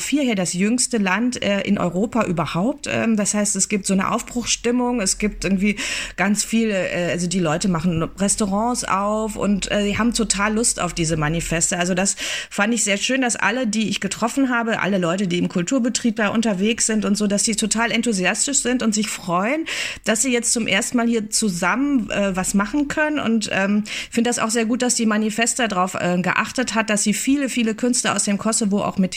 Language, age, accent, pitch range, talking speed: German, 30-49, German, 190-235 Hz, 215 wpm